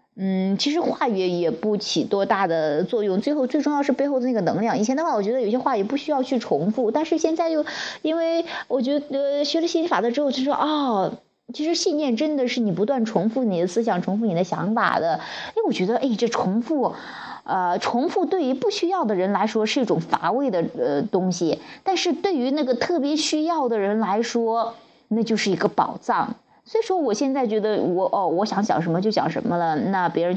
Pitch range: 195-260 Hz